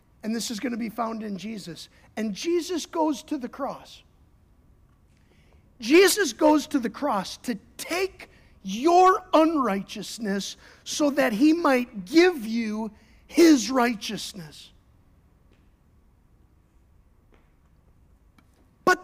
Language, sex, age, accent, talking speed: English, male, 50-69, American, 100 wpm